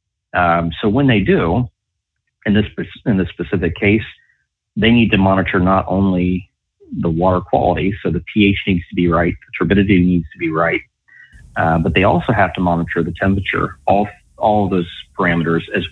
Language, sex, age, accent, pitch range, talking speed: English, male, 40-59, American, 85-100 Hz, 180 wpm